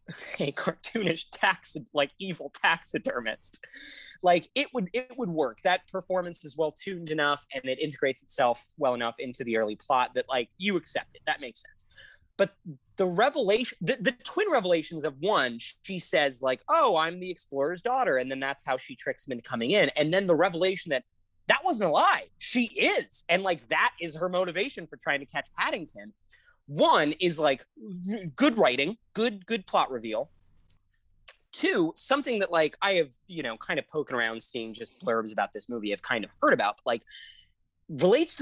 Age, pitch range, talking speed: 30-49, 150-240 Hz, 185 wpm